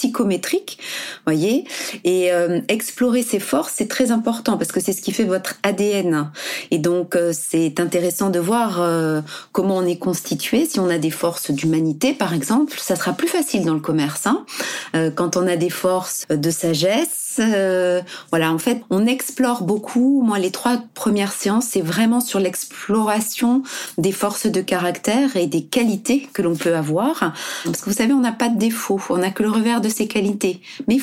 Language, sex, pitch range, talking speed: French, female, 175-240 Hz, 195 wpm